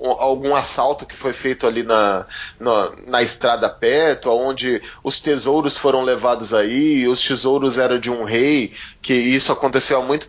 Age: 20-39